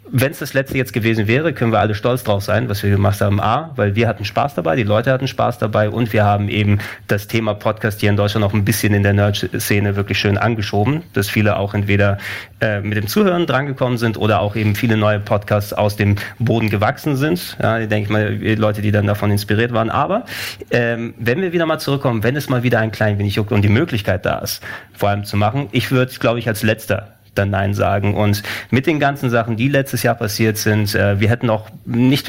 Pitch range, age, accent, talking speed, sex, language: 105-125 Hz, 30-49, German, 230 wpm, male, German